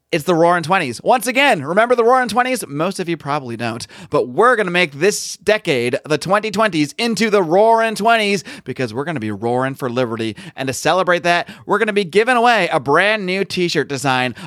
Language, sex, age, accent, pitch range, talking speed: English, male, 30-49, American, 140-185 Hz, 210 wpm